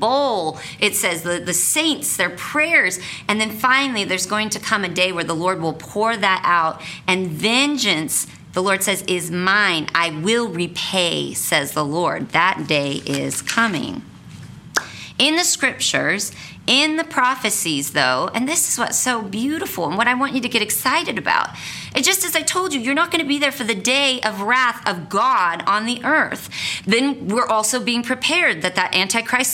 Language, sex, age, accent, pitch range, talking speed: English, female, 40-59, American, 180-270 Hz, 190 wpm